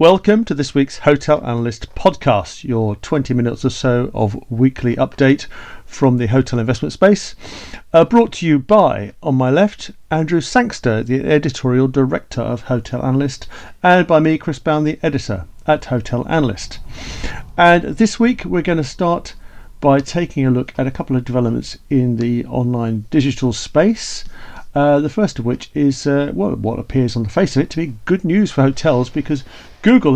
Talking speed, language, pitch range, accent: 180 wpm, English, 125-160 Hz, British